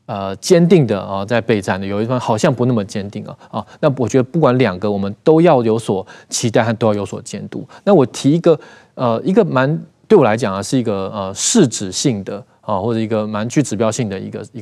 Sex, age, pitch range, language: male, 20-39, 105-145 Hz, Chinese